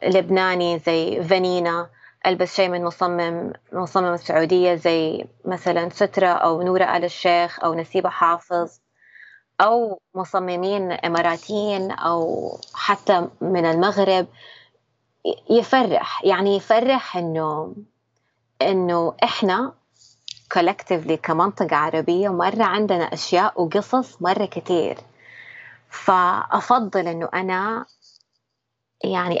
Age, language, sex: 20-39, Arabic, female